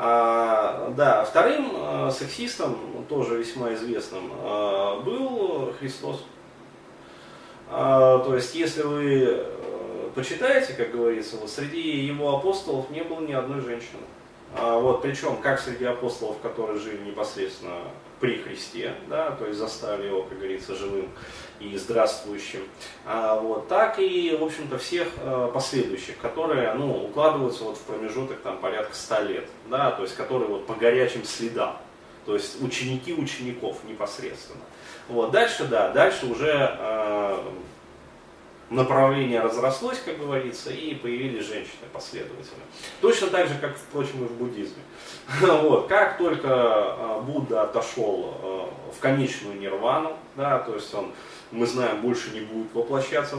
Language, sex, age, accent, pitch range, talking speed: Russian, male, 20-39, native, 115-150 Hz, 130 wpm